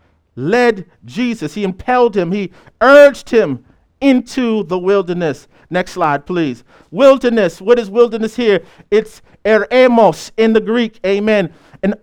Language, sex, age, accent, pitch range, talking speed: English, male, 50-69, American, 165-240 Hz, 130 wpm